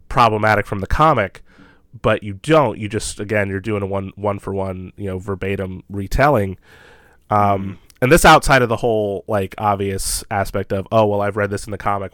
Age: 30-49